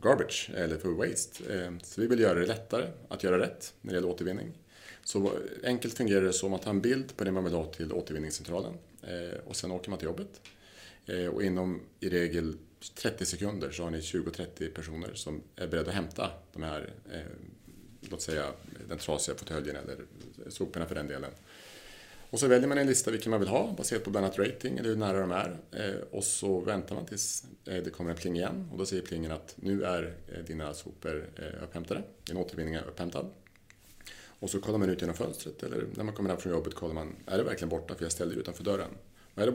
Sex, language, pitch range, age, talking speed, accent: male, English, 85-100 Hz, 30-49, 210 wpm, Norwegian